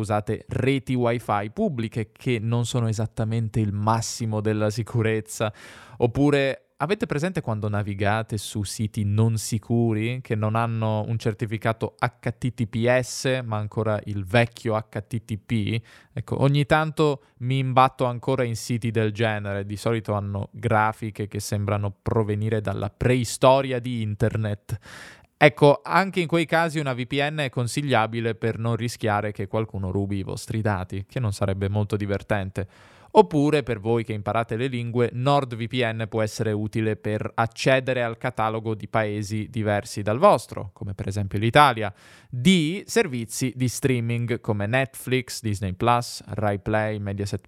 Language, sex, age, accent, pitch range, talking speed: Italian, male, 20-39, native, 105-130 Hz, 140 wpm